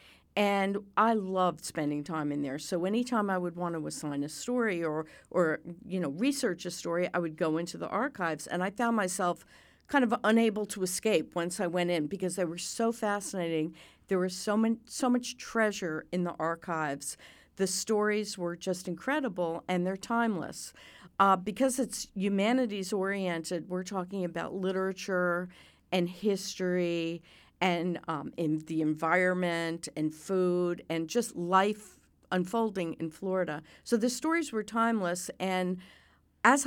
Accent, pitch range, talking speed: American, 170-205 Hz, 155 wpm